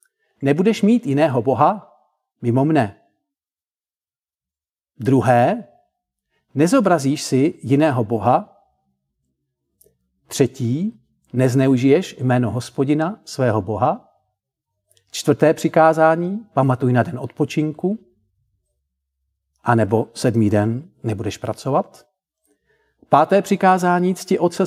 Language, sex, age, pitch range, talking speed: Czech, male, 50-69, 120-170 Hz, 80 wpm